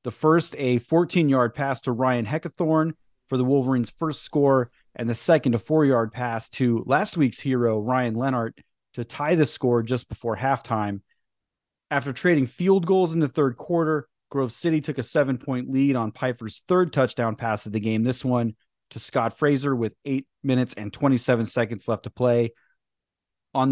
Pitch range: 115-150 Hz